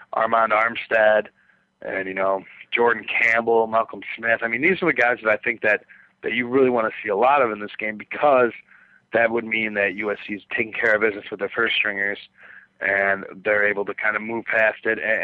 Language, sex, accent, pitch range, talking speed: English, male, American, 100-115 Hz, 220 wpm